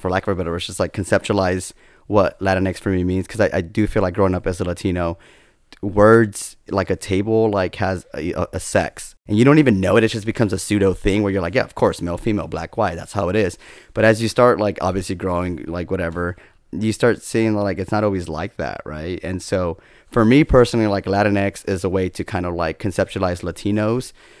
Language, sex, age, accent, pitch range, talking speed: English, male, 20-39, American, 90-105 Hz, 235 wpm